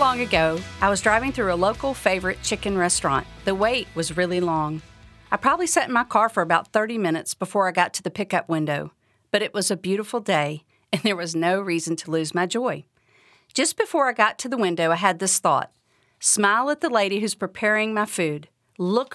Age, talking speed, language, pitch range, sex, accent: 50-69, 215 wpm, English, 165-240 Hz, female, American